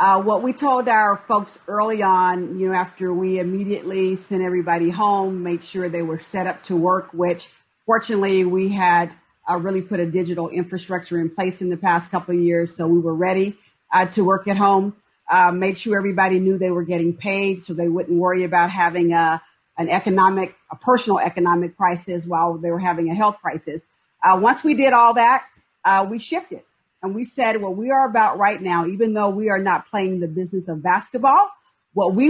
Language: English